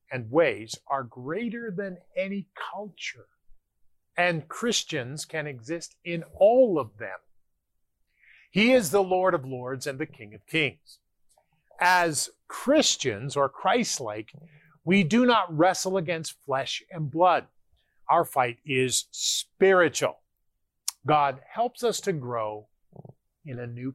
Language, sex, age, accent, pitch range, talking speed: English, male, 40-59, American, 130-180 Hz, 125 wpm